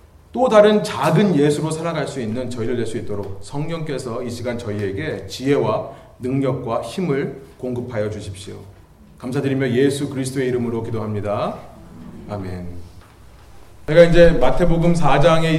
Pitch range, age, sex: 110-165 Hz, 30-49, male